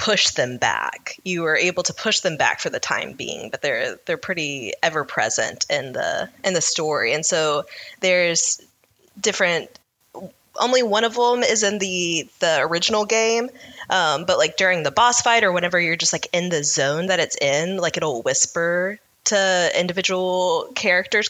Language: English